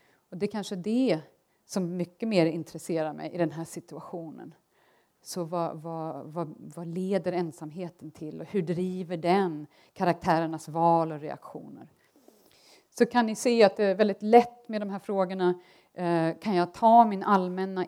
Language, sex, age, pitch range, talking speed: Swedish, female, 40-59, 165-200 Hz, 160 wpm